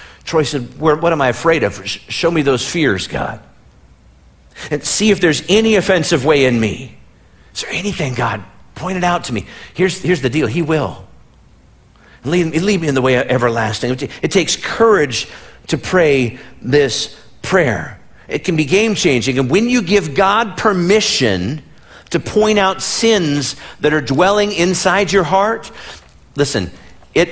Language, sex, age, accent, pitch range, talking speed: English, male, 50-69, American, 115-165 Hz, 160 wpm